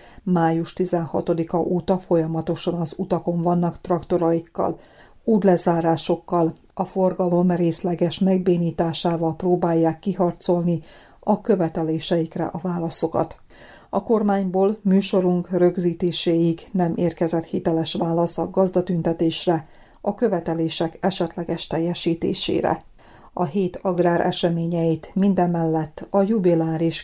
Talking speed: 90 wpm